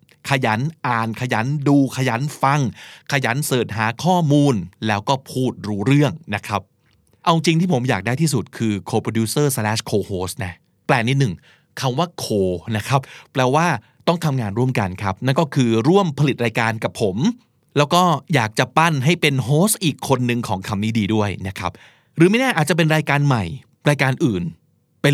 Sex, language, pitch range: male, Thai, 105-145 Hz